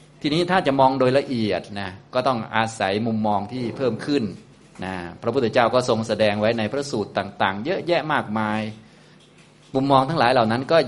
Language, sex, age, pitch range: Thai, male, 20-39, 100-120 Hz